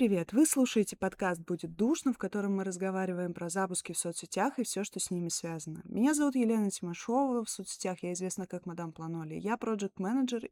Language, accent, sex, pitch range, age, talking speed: Russian, native, female, 200-260 Hz, 20-39, 190 wpm